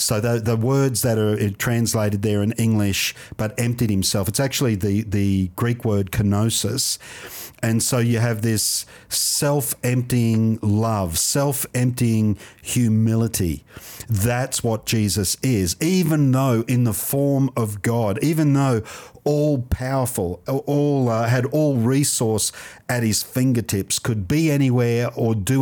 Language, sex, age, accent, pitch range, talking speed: English, male, 50-69, Australian, 105-125 Hz, 135 wpm